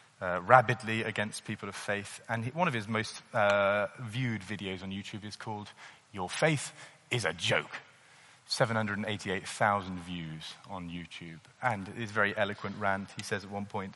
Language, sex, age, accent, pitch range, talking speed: English, male, 30-49, British, 105-145 Hz, 165 wpm